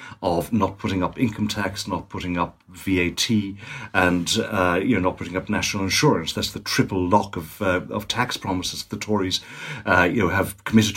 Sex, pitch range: male, 90-110 Hz